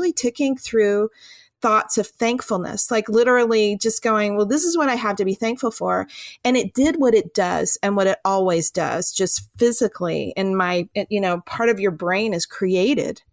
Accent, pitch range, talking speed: American, 190-235 Hz, 190 wpm